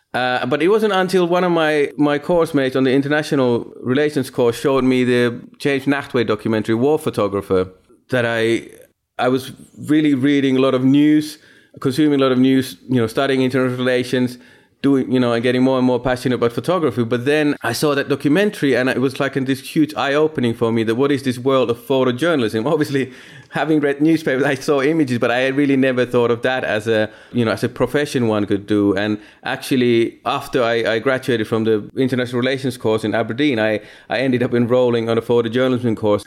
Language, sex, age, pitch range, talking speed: English, male, 30-49, 115-140 Hz, 205 wpm